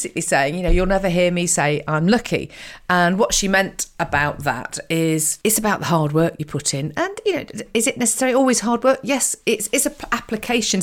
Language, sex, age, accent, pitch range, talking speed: English, female, 40-59, British, 155-215 Hz, 215 wpm